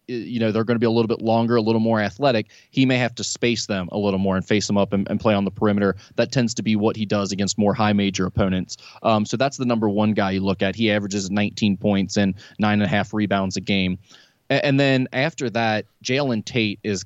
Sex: male